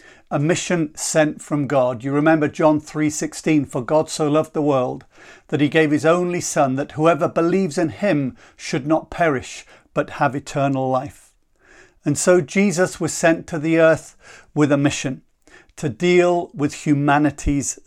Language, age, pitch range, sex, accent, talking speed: English, 50-69, 145-175 Hz, male, British, 160 wpm